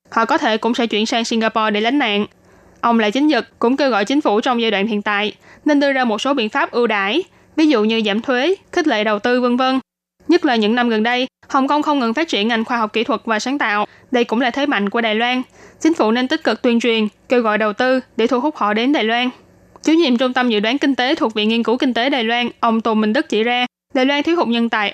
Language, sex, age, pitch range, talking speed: Vietnamese, female, 20-39, 225-270 Hz, 285 wpm